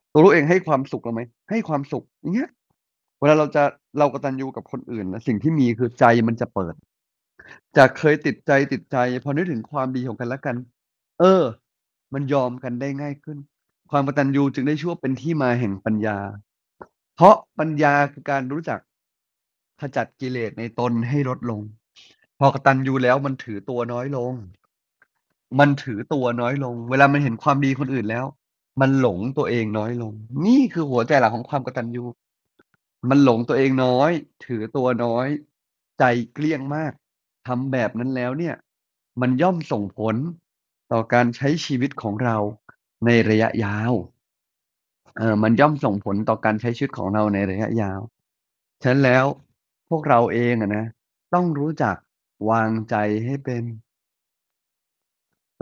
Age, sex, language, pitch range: 30-49, male, Thai, 115-140 Hz